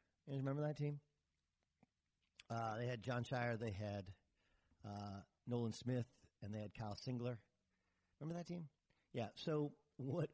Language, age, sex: English, 50-69, male